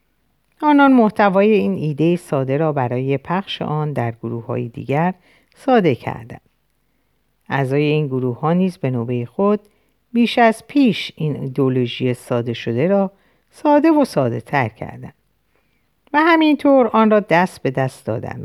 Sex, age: female, 50-69